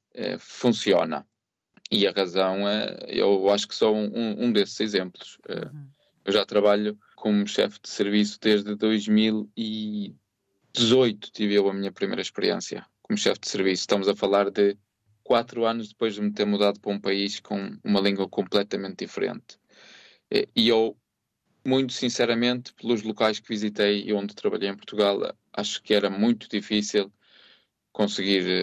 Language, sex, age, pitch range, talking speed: Portuguese, male, 20-39, 100-110 Hz, 145 wpm